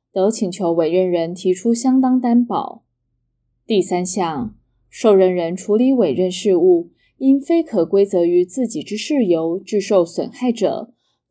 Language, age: Chinese, 20-39